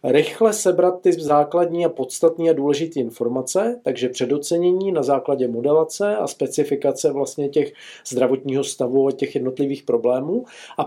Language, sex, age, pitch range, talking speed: Czech, male, 40-59, 140-160 Hz, 140 wpm